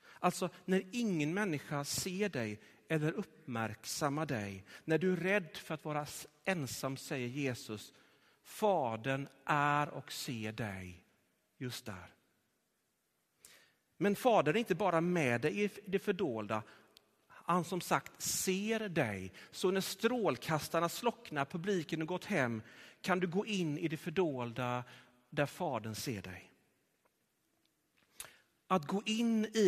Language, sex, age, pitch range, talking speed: Swedish, male, 40-59, 120-185 Hz, 130 wpm